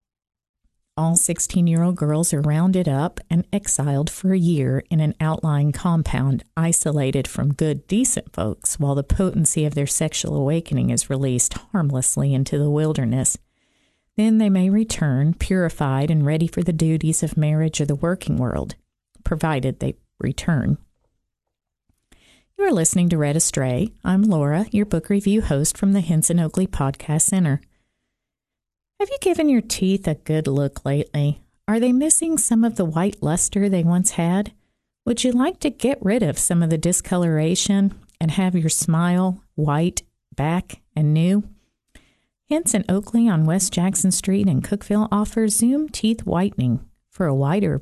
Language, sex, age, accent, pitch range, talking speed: English, female, 40-59, American, 150-205 Hz, 155 wpm